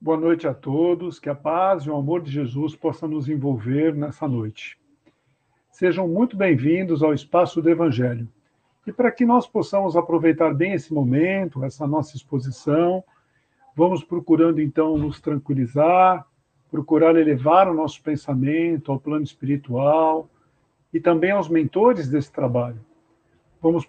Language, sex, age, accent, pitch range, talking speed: Portuguese, male, 50-69, Brazilian, 145-170 Hz, 140 wpm